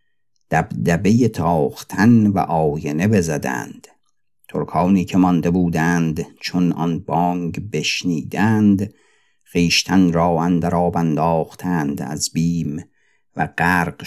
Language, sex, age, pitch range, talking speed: Persian, male, 50-69, 85-100 Hz, 95 wpm